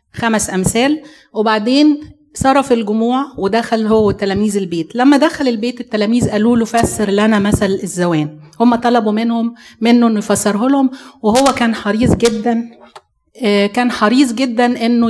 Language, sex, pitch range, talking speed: Arabic, female, 205-245 Hz, 130 wpm